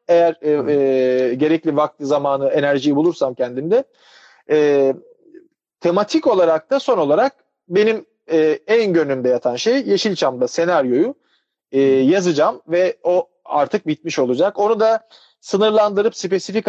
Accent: native